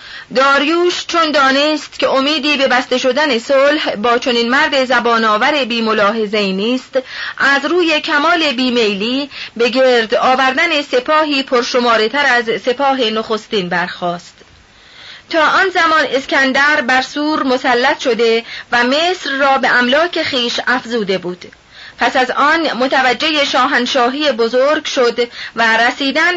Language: Persian